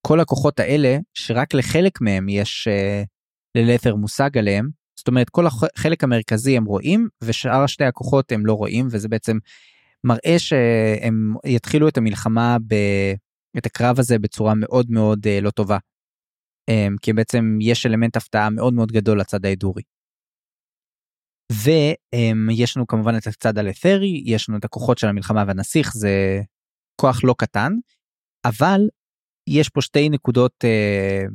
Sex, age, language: male, 20-39, Hebrew